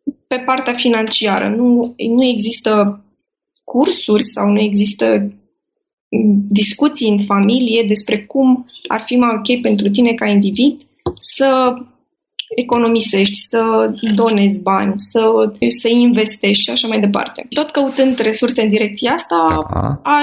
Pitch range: 210-255 Hz